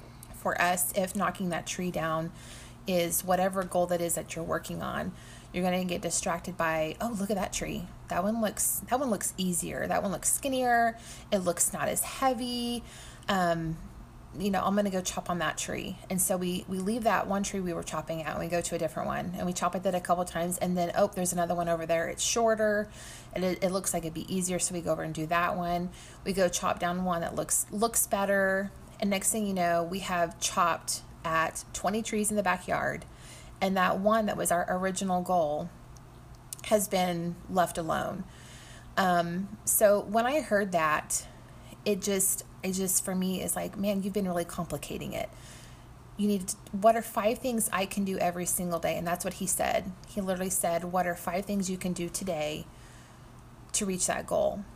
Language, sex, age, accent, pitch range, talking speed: English, female, 30-49, American, 175-205 Hz, 215 wpm